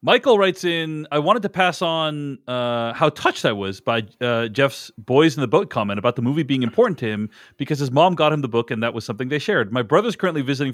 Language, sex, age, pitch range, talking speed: English, male, 40-59, 115-160 Hz, 250 wpm